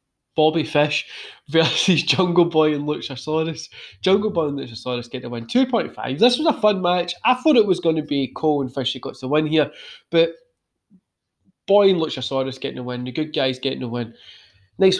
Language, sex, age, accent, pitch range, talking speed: English, male, 20-39, British, 130-190 Hz, 195 wpm